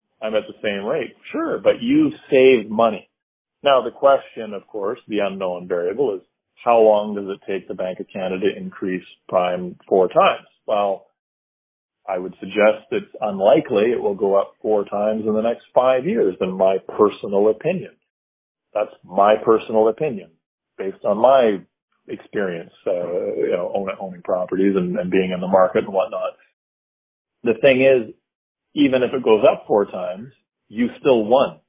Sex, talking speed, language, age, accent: male, 170 wpm, English, 40-59, American